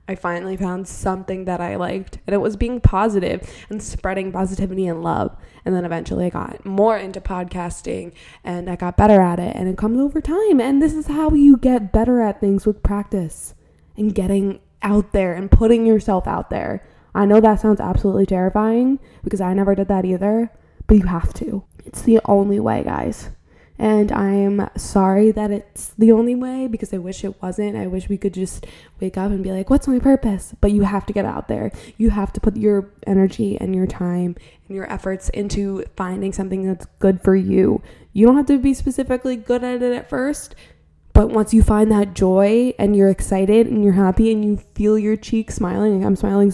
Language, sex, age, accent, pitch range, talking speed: English, female, 20-39, American, 190-220 Hz, 210 wpm